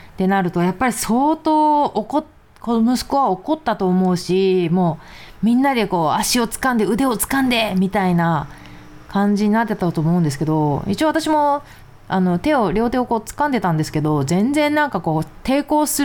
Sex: female